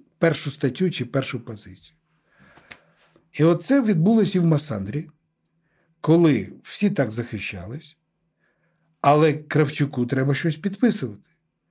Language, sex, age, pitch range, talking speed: Ukrainian, male, 60-79, 140-190 Hz, 110 wpm